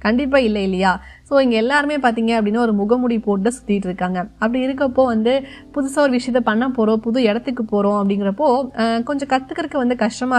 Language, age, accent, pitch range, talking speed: Tamil, 20-39, native, 210-275 Hz, 175 wpm